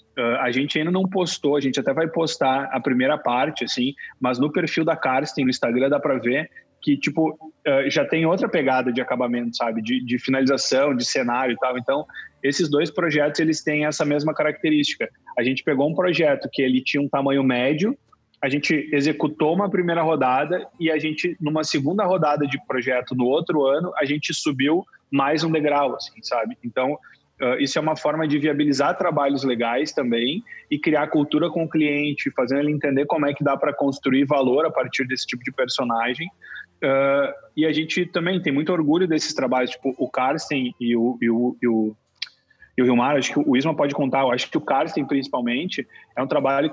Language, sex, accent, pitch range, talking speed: Portuguese, male, Brazilian, 130-160 Hz, 205 wpm